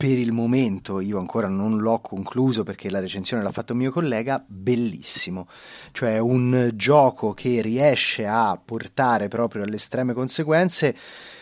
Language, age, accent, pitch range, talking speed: Italian, 30-49, native, 115-150 Hz, 140 wpm